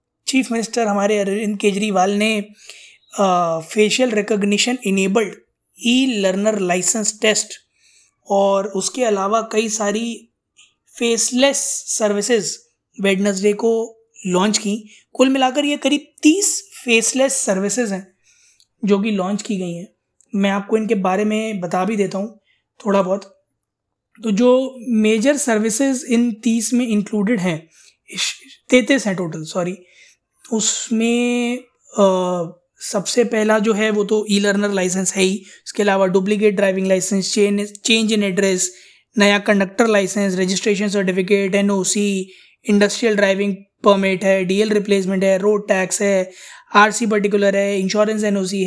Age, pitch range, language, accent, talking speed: 20-39, 195-225 Hz, Hindi, native, 130 wpm